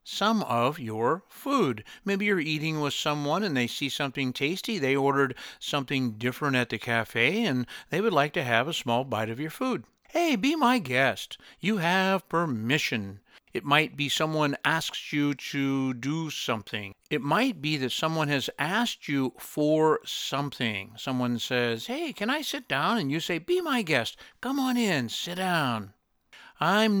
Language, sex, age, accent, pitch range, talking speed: English, male, 60-79, American, 125-195 Hz, 175 wpm